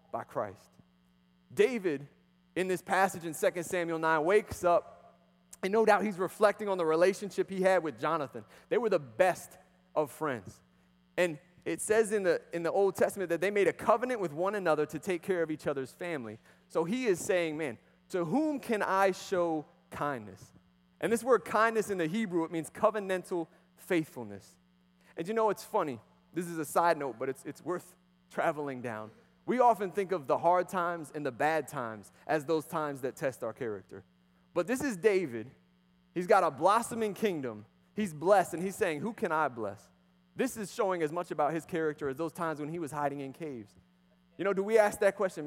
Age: 30-49